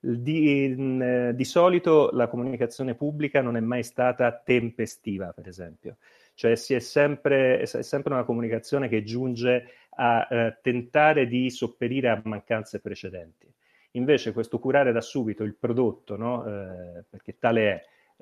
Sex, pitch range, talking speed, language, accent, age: male, 110-130 Hz, 155 wpm, Italian, native, 30-49